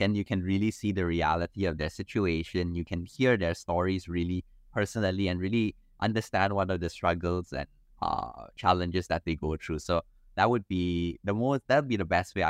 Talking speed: 195 wpm